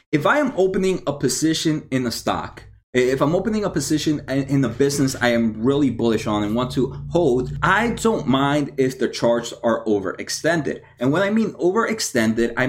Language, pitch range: English, 125-160 Hz